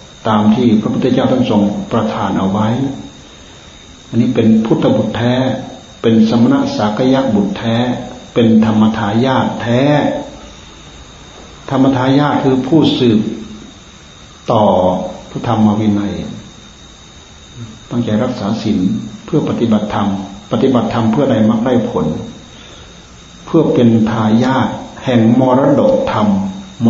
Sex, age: male, 60-79